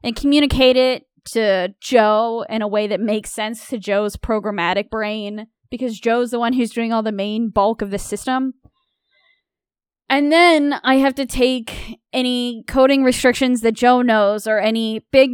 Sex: female